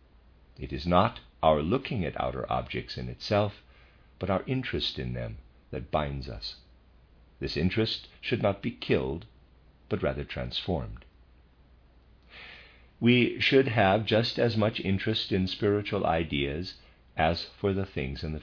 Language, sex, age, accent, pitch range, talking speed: English, male, 50-69, American, 65-95 Hz, 140 wpm